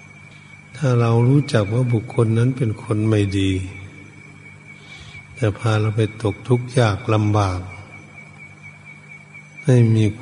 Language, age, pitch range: Thai, 60-79, 100-130 Hz